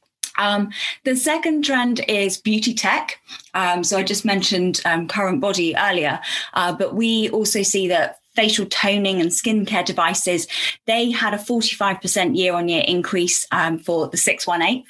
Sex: female